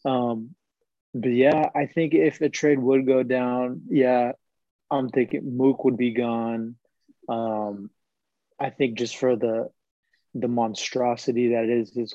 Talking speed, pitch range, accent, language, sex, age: 145 wpm, 120-135 Hz, American, English, male, 20-39